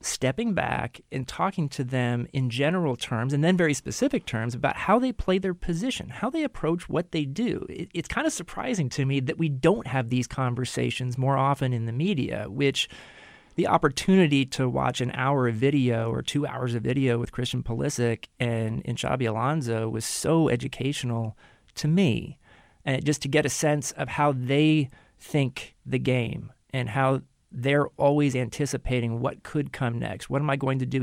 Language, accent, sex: English, American, male